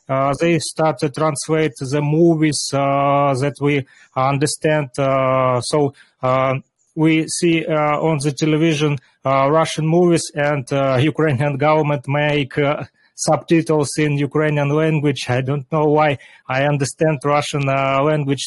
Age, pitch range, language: 30-49, 135-155 Hz, Russian